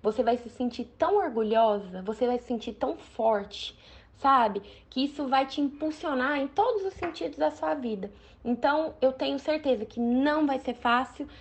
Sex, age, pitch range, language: female, 10-29, 215-255 Hz, Portuguese